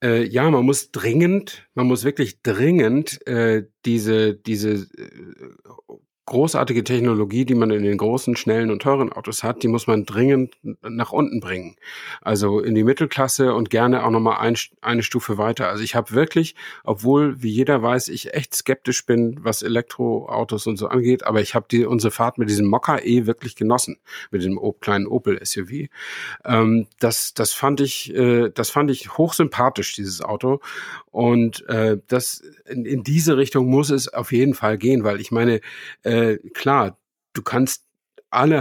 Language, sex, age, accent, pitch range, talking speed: German, male, 50-69, German, 110-135 Hz, 165 wpm